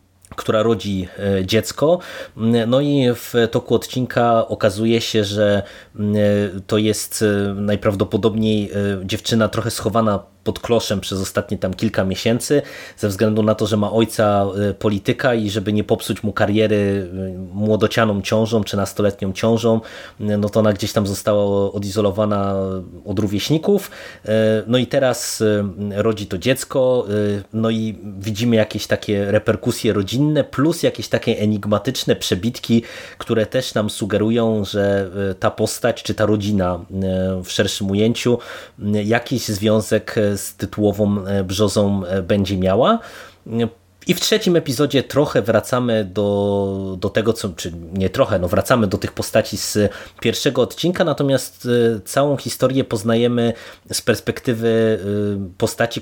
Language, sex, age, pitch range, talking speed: Polish, male, 20-39, 100-115 Hz, 125 wpm